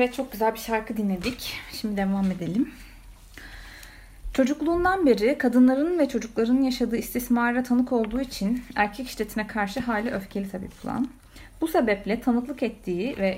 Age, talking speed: 30-49, 140 wpm